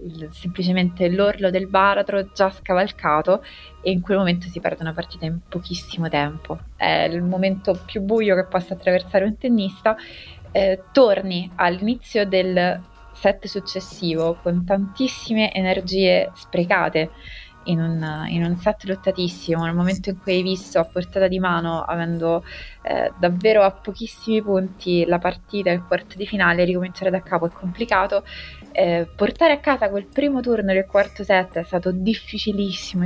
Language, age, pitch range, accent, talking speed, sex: Italian, 20-39, 175-200 Hz, native, 145 wpm, female